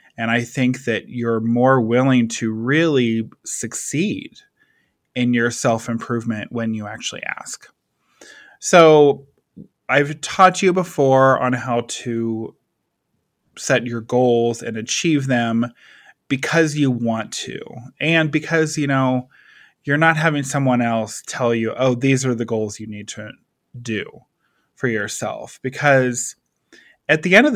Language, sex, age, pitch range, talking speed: English, male, 20-39, 115-150 Hz, 135 wpm